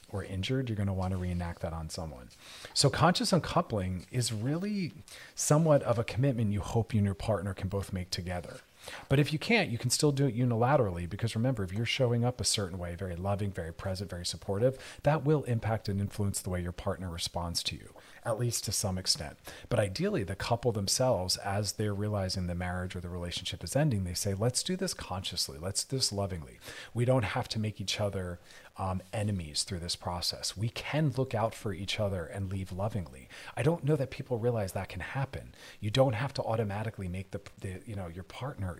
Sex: male